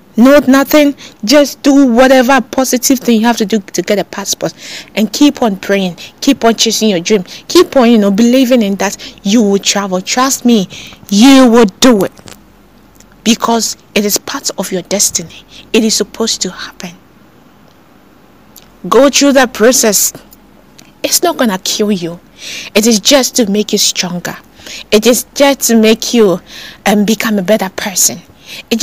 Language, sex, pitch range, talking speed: English, female, 210-270 Hz, 170 wpm